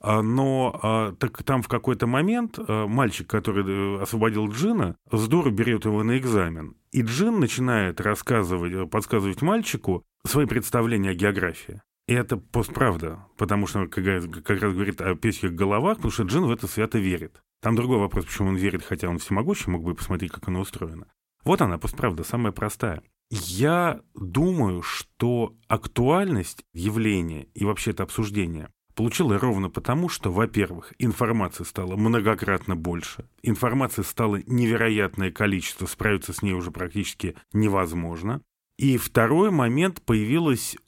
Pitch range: 95-125 Hz